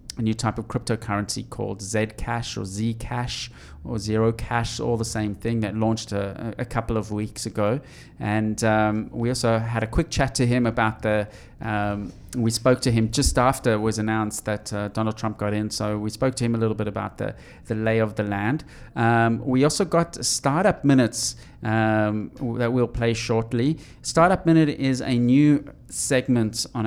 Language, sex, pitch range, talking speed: English, male, 110-125 Hz, 190 wpm